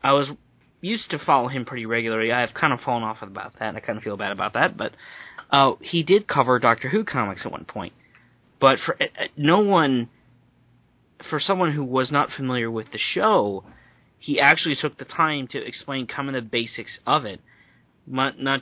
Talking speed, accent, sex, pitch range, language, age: 205 wpm, American, male, 115-135 Hz, English, 30-49